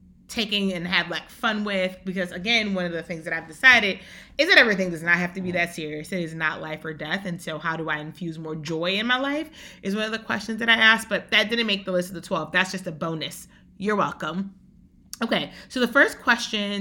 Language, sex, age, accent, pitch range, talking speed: English, female, 30-49, American, 175-215 Hz, 250 wpm